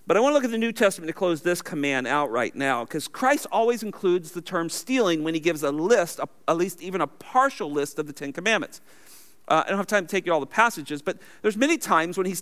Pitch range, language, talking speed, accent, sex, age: 155-220 Hz, English, 270 wpm, American, male, 40-59